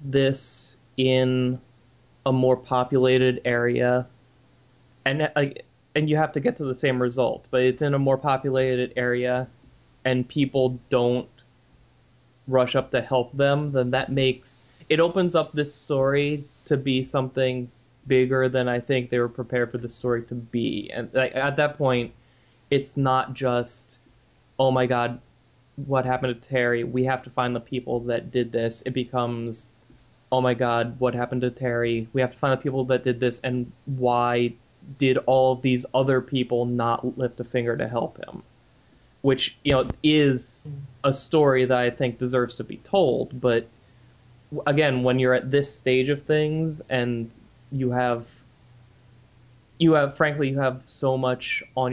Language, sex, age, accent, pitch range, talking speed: English, male, 20-39, American, 125-135 Hz, 165 wpm